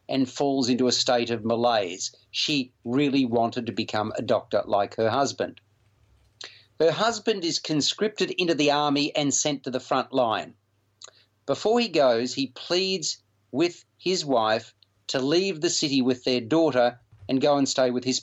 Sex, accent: male, Australian